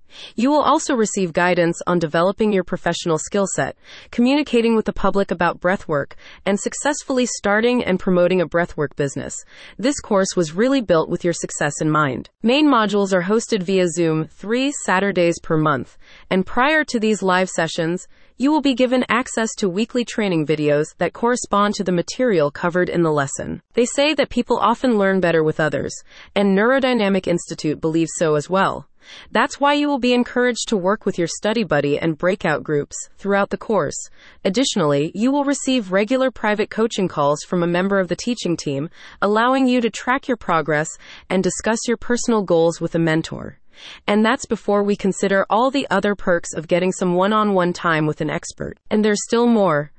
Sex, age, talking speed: female, 30-49, 185 wpm